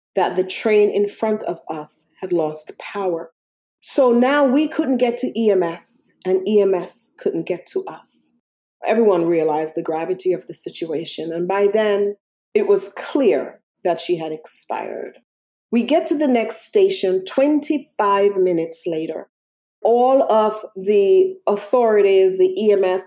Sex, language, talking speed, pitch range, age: female, English, 145 wpm, 180-220 Hz, 40-59